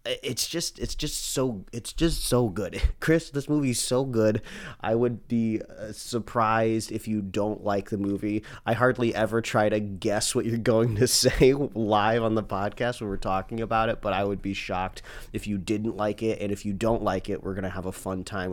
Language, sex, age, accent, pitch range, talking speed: English, male, 30-49, American, 100-120 Hz, 220 wpm